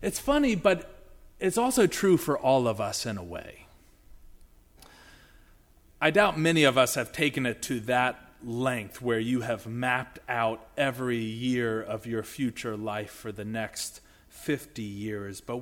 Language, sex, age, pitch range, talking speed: English, male, 30-49, 100-130 Hz, 160 wpm